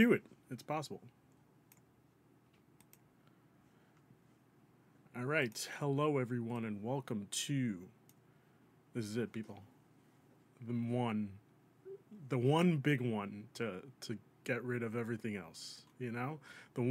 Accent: American